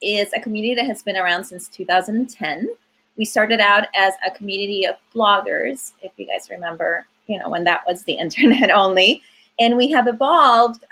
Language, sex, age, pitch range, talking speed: English, female, 30-49, 175-220 Hz, 180 wpm